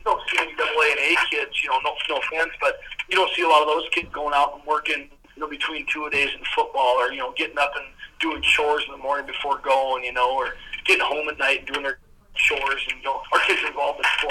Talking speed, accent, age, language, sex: 265 wpm, American, 40-59, English, male